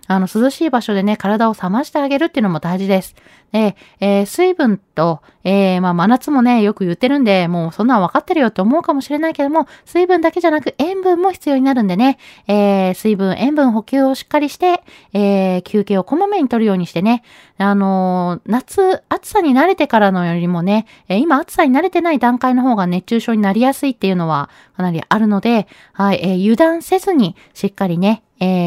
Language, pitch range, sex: Japanese, 190-265 Hz, female